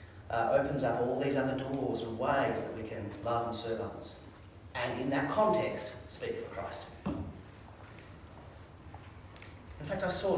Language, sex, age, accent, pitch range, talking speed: English, male, 30-49, Australian, 115-180 Hz, 155 wpm